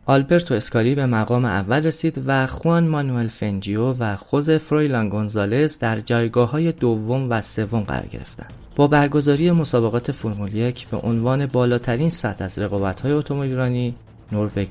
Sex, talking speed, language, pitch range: male, 140 wpm, Persian, 110-135 Hz